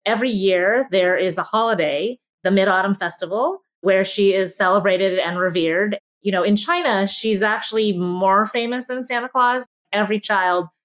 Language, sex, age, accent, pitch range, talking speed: English, female, 30-49, American, 185-245 Hz, 155 wpm